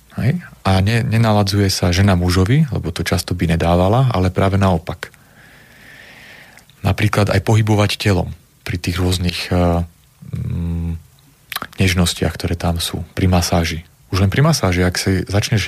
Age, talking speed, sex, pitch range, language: 30-49, 130 wpm, male, 90-115 Hz, Slovak